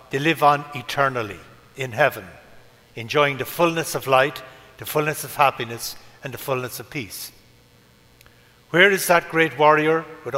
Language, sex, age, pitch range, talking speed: English, male, 60-79, 120-145 Hz, 150 wpm